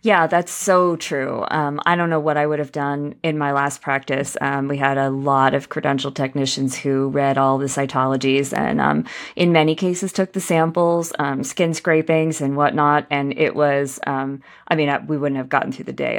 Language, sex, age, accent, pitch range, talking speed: English, female, 30-49, American, 140-165 Hz, 210 wpm